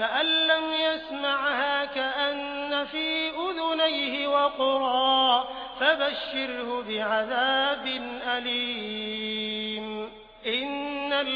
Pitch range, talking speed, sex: 245-285 Hz, 55 wpm, male